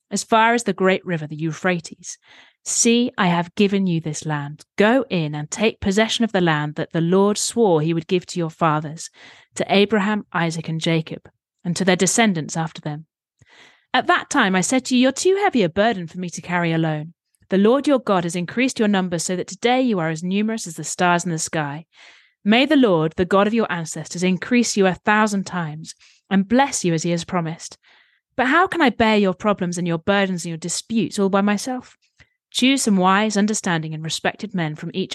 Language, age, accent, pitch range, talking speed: English, 30-49, British, 165-215 Hz, 215 wpm